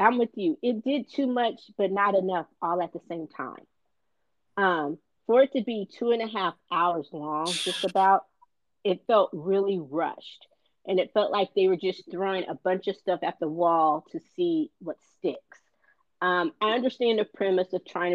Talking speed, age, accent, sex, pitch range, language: 190 wpm, 40-59, American, female, 175-215 Hz, English